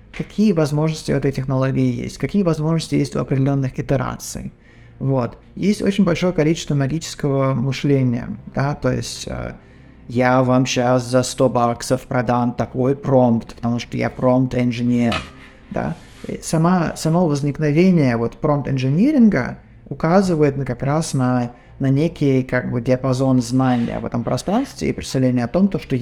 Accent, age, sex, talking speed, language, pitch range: native, 20-39, male, 135 wpm, Russian, 125-155 Hz